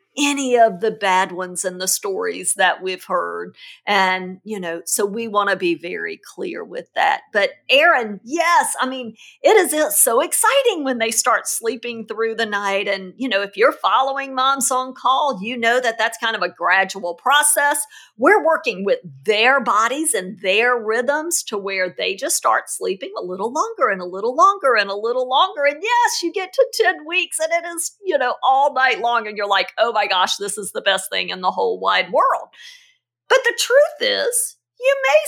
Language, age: English, 50-69